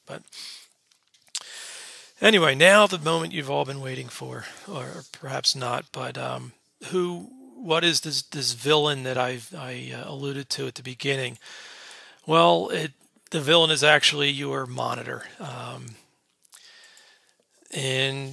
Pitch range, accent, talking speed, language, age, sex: 130-155 Hz, American, 120 wpm, English, 40-59, male